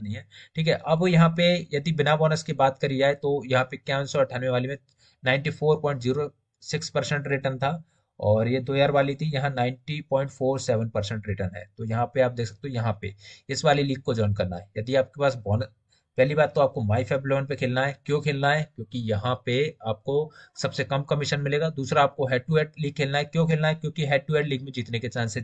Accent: native